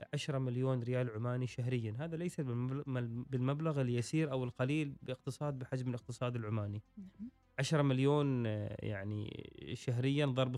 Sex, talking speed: male, 115 wpm